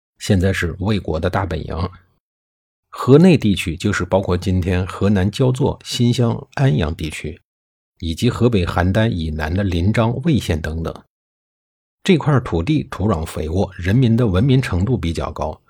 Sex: male